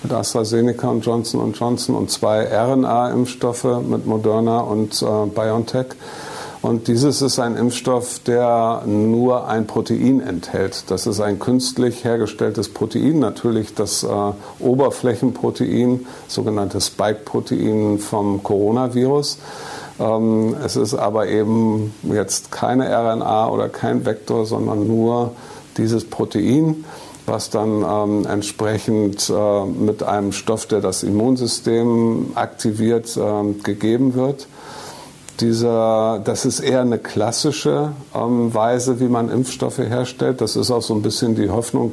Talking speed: 125 wpm